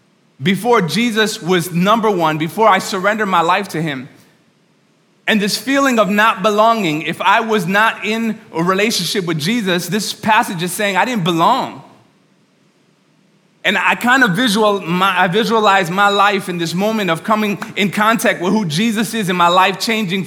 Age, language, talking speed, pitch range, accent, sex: 30-49, English, 170 wpm, 170-225 Hz, American, male